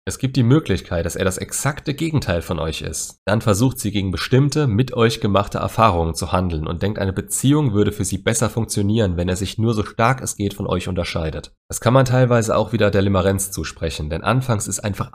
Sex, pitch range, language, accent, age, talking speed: male, 90-110 Hz, German, German, 30-49, 220 wpm